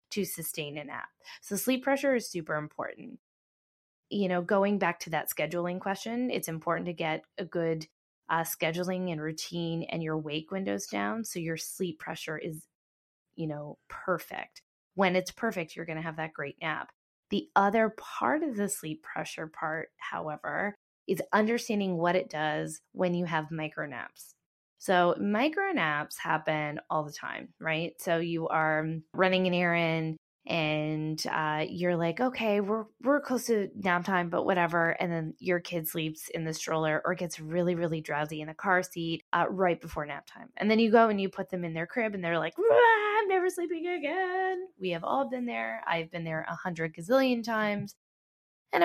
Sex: female